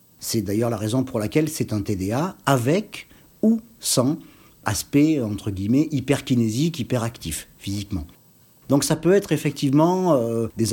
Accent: French